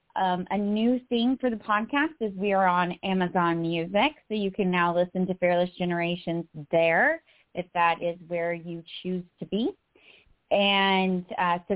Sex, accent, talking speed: female, American, 170 wpm